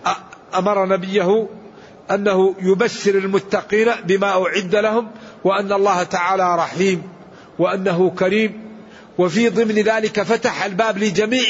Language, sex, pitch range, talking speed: Arabic, male, 185-225 Hz, 105 wpm